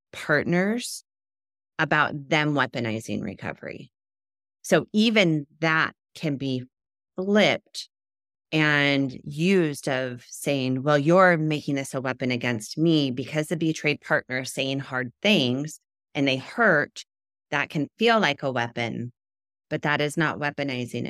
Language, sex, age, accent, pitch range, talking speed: English, female, 30-49, American, 120-155 Hz, 130 wpm